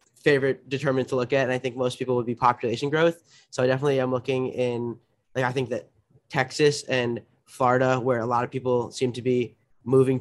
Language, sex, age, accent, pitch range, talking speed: English, male, 20-39, American, 120-130 Hz, 210 wpm